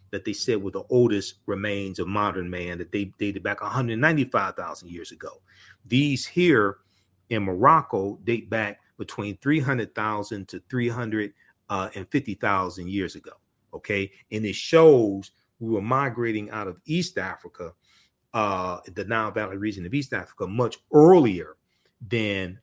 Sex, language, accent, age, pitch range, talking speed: male, English, American, 40-59, 95-125 Hz, 140 wpm